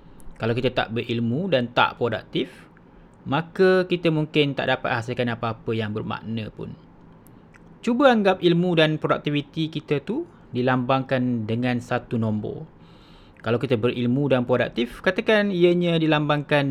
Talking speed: 130 wpm